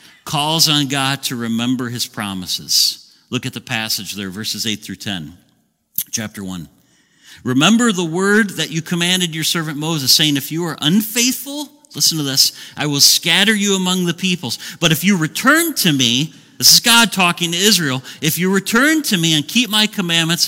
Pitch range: 135-195 Hz